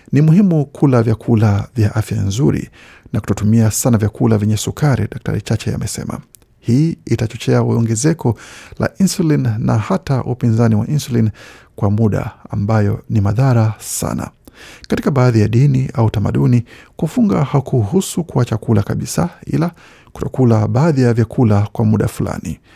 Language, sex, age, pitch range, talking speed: Swahili, male, 50-69, 110-135 Hz, 135 wpm